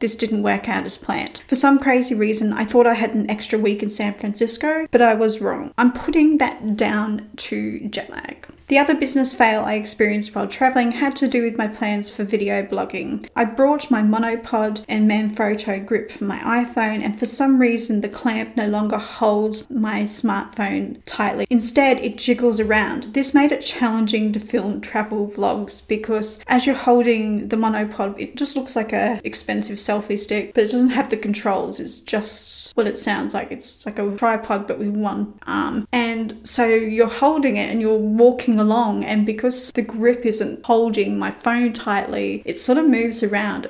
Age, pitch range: 30-49, 215-245 Hz